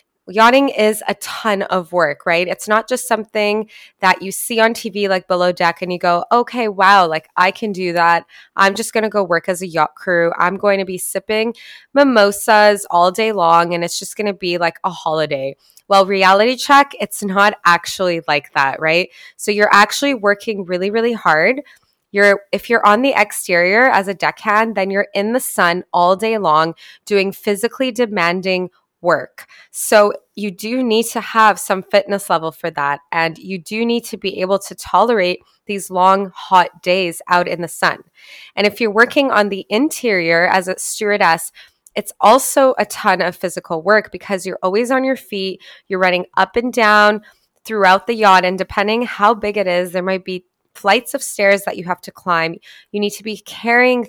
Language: English